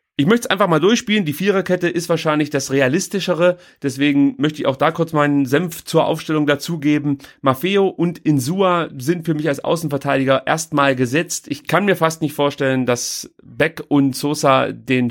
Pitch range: 130-165 Hz